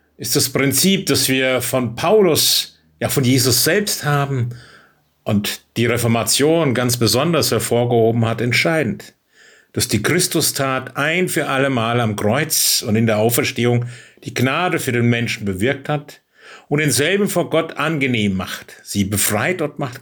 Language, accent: German, German